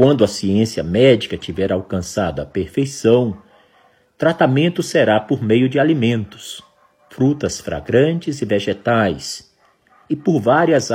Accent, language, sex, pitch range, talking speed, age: Brazilian, Portuguese, male, 100-150 Hz, 115 wpm, 50-69